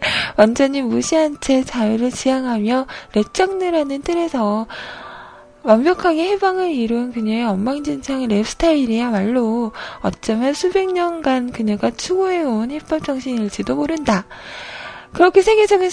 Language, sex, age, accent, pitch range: Korean, female, 20-39, native, 225-330 Hz